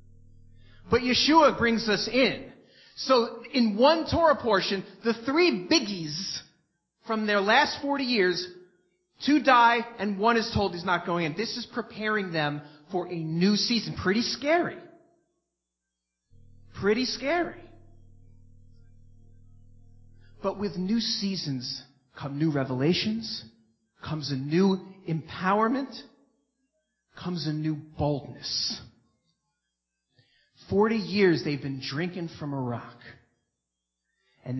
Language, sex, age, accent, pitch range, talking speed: English, male, 30-49, American, 140-220 Hz, 110 wpm